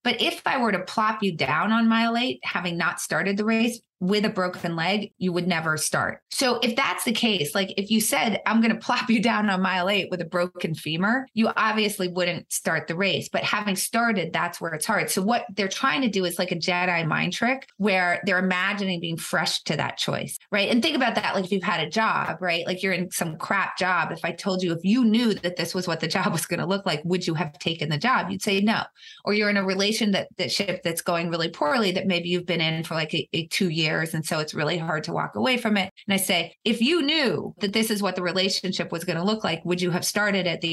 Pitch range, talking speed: 175-215 Hz, 265 wpm